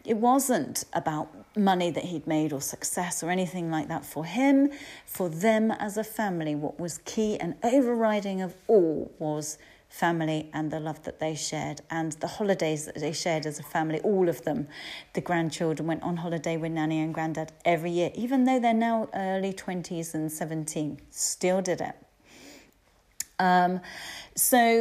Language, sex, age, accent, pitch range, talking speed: English, female, 40-59, British, 160-220 Hz, 170 wpm